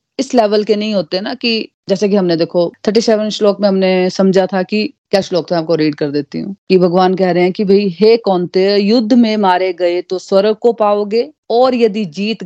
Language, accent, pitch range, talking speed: Hindi, native, 180-225 Hz, 225 wpm